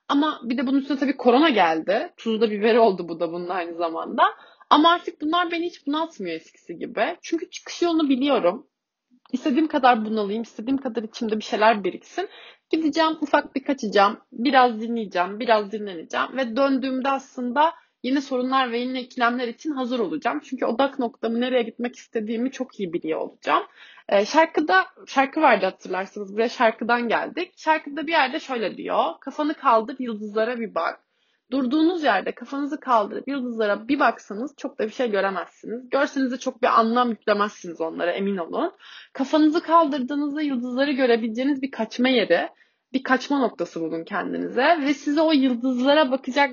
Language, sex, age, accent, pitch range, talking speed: Turkish, female, 30-49, native, 225-295 Hz, 155 wpm